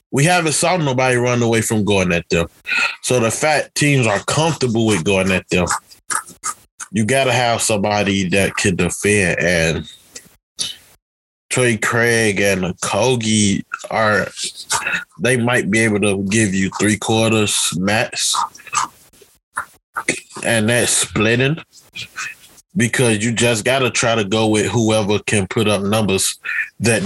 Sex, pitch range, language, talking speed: male, 100-130 Hz, English, 135 wpm